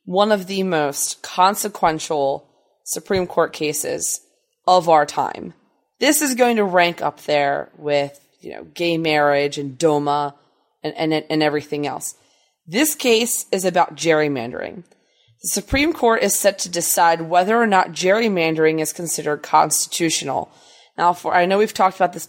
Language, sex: English, female